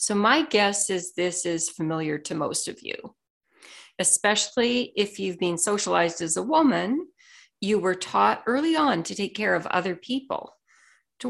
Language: English